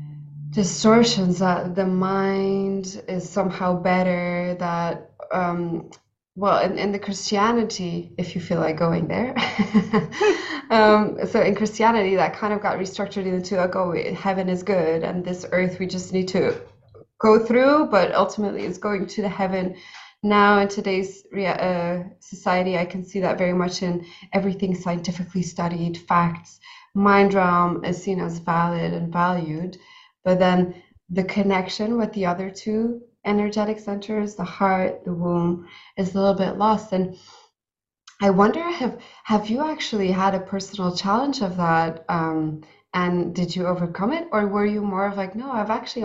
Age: 20-39